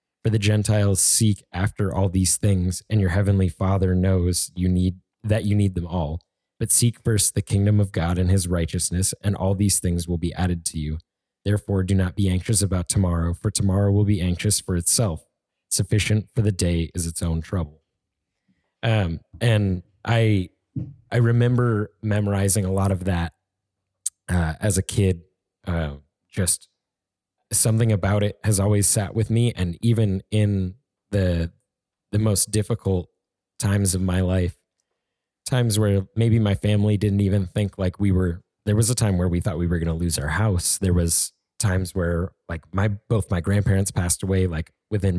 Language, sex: English, male